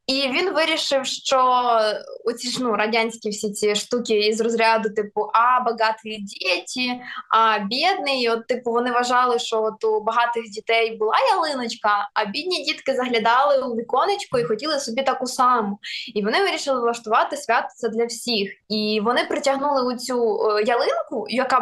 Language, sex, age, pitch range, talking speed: Ukrainian, female, 20-39, 225-275 Hz, 155 wpm